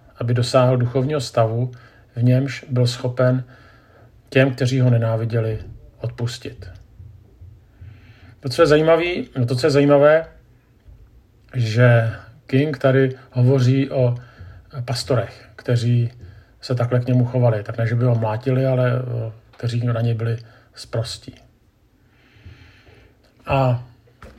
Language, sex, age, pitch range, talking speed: Czech, male, 50-69, 115-135 Hz, 115 wpm